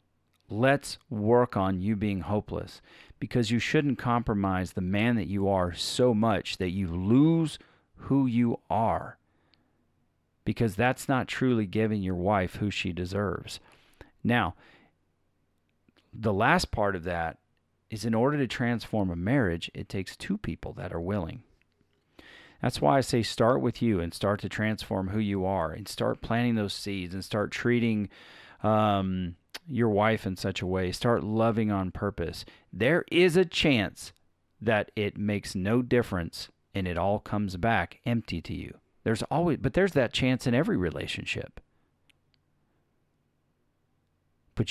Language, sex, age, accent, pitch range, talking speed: English, male, 40-59, American, 95-120 Hz, 150 wpm